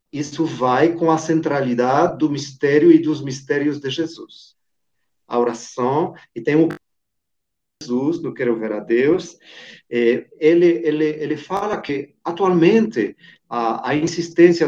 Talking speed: 130 wpm